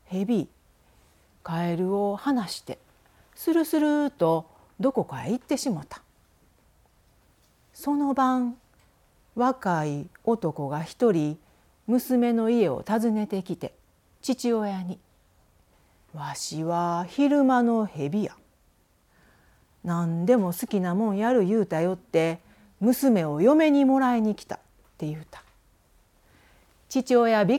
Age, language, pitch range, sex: 40-59, Japanese, 150-240 Hz, female